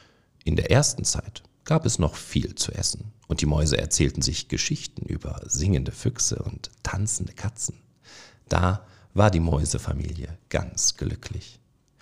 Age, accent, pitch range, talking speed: 50-69, German, 95-125 Hz, 140 wpm